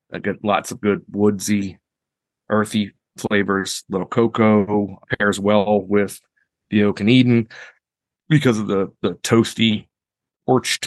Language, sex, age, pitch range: English, male, 30-49, 95-110 Hz